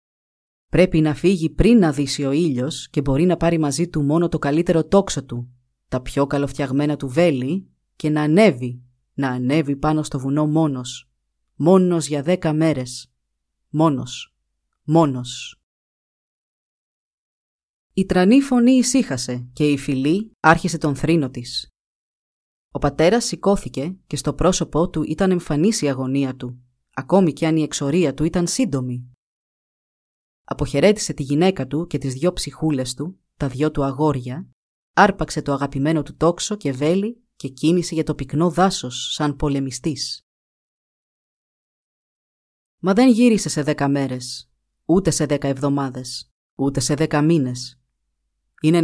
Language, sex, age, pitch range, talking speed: Greek, female, 30-49, 130-165 Hz, 140 wpm